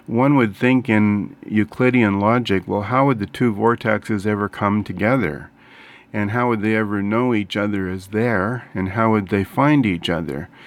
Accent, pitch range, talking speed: American, 100-115 Hz, 180 wpm